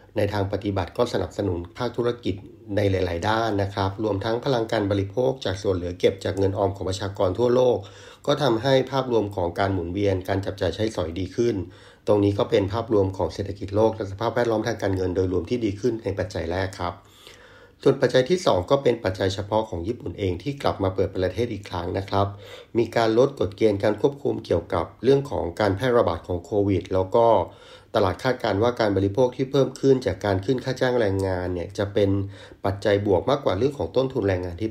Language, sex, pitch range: Thai, male, 95-115 Hz